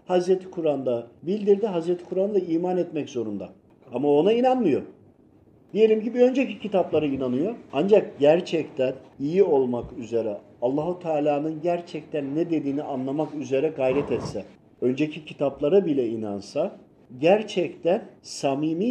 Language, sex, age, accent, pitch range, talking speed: Turkish, male, 50-69, native, 140-205 Hz, 115 wpm